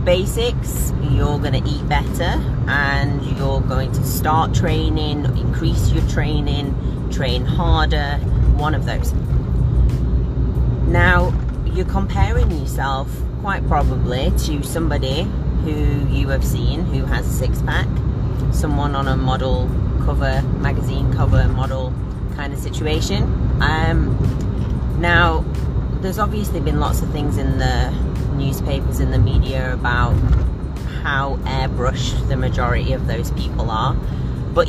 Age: 30-49